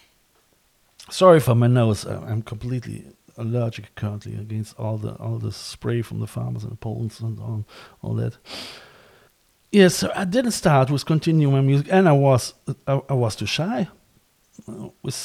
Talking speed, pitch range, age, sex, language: 165 wpm, 115-135 Hz, 50-69, male, English